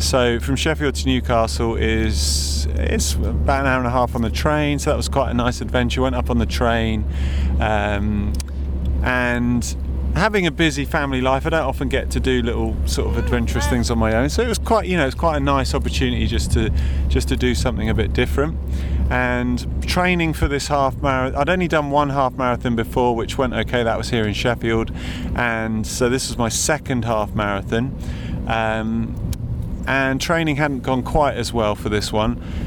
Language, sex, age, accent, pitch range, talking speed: English, male, 30-49, British, 95-135 Hz, 200 wpm